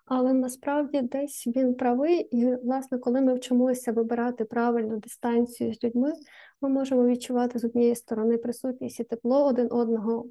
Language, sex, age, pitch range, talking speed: Ukrainian, female, 20-39, 230-255 Hz, 150 wpm